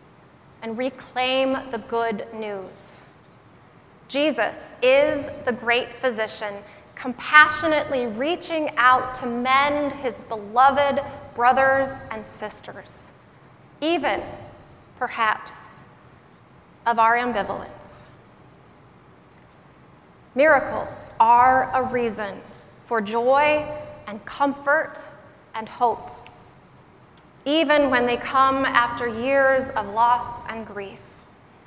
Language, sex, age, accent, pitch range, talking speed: English, female, 30-49, American, 235-285 Hz, 85 wpm